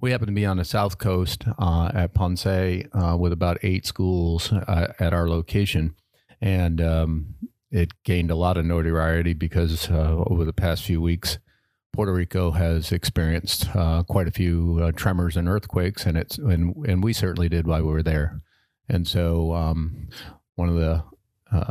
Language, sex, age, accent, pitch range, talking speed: English, male, 40-59, American, 85-95 Hz, 180 wpm